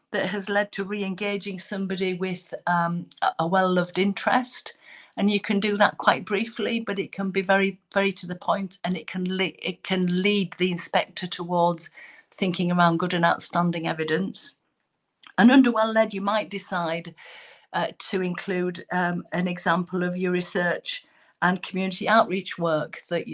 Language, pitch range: English, 175-205 Hz